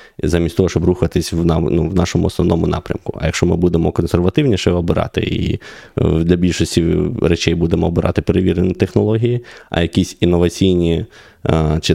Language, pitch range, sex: Ukrainian, 85-95 Hz, male